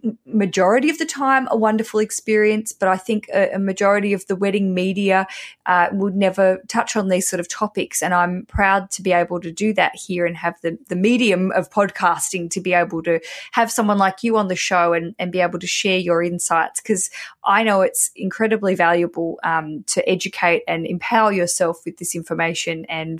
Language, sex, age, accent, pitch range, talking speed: English, female, 20-39, Australian, 175-215 Hz, 200 wpm